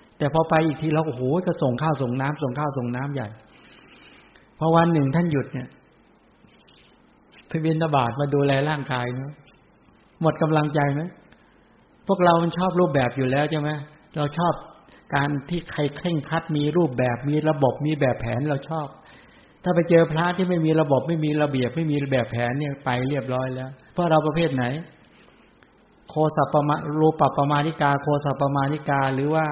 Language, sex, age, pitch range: English, male, 60-79, 130-160 Hz